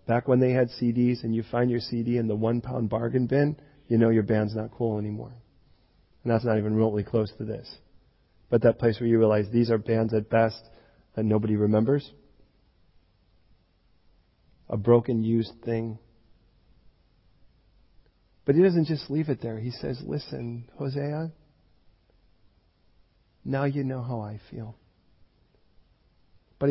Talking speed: 150 wpm